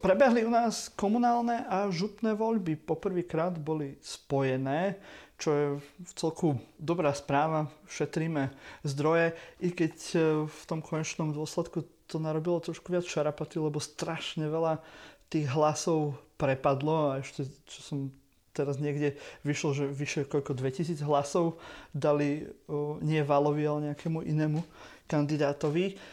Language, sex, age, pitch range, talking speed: Slovak, male, 30-49, 145-170 Hz, 125 wpm